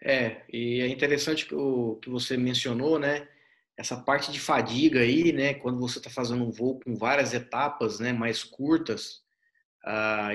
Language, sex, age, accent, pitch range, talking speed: Portuguese, male, 20-39, Brazilian, 115-140 Hz, 170 wpm